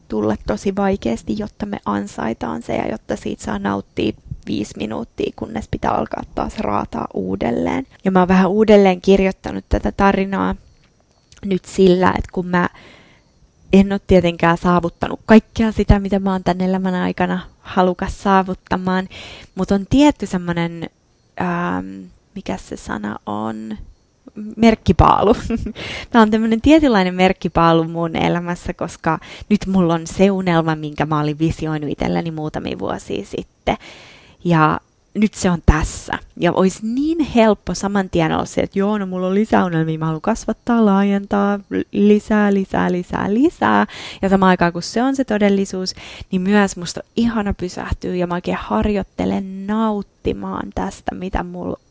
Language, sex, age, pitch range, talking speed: Finnish, female, 20-39, 165-205 Hz, 145 wpm